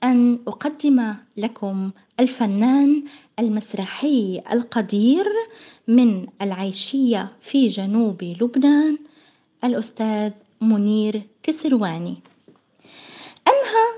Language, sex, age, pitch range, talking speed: Arabic, female, 20-39, 215-305 Hz, 65 wpm